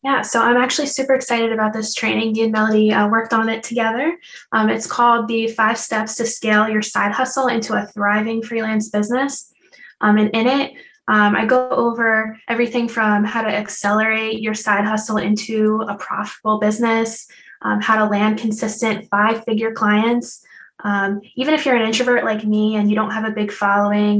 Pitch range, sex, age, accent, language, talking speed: 205-225 Hz, female, 10-29, American, English, 185 wpm